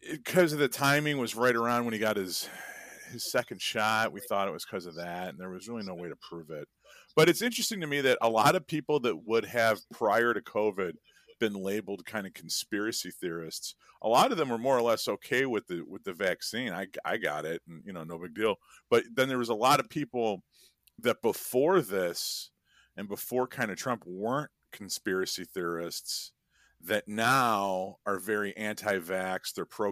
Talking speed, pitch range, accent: 205 wpm, 95-125 Hz, American